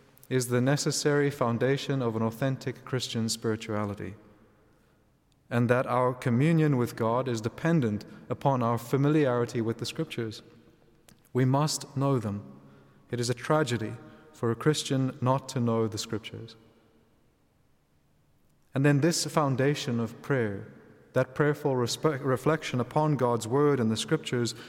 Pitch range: 115-140 Hz